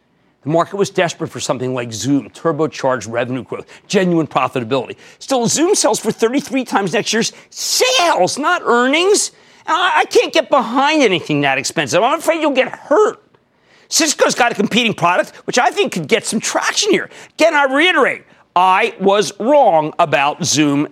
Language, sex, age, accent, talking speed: English, male, 50-69, American, 165 wpm